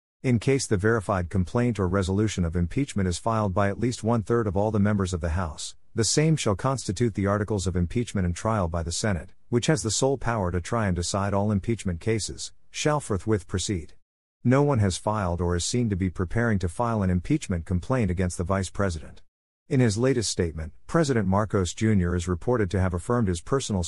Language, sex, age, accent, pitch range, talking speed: English, male, 50-69, American, 90-115 Hz, 210 wpm